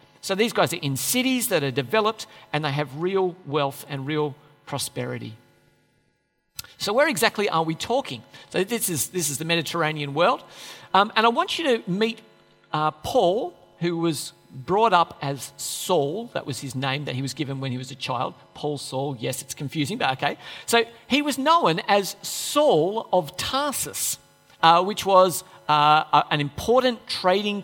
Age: 50-69